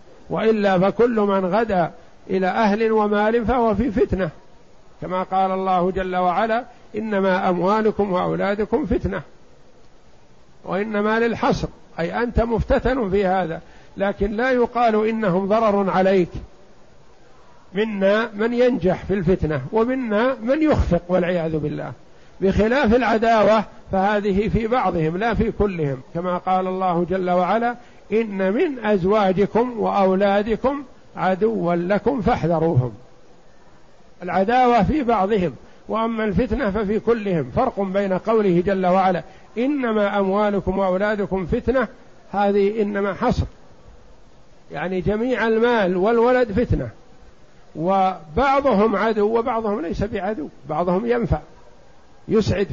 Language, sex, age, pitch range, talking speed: Arabic, male, 50-69, 185-225 Hz, 105 wpm